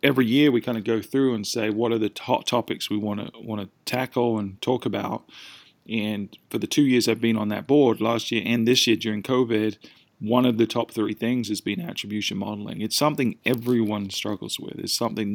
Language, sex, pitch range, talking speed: English, male, 105-125 Hz, 225 wpm